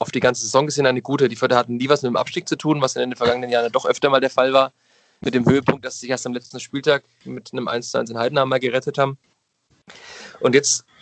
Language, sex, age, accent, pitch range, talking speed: German, male, 20-39, German, 125-140 Hz, 260 wpm